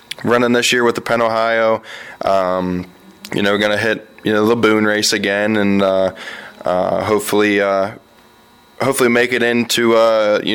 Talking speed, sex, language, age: 170 wpm, male, English, 20-39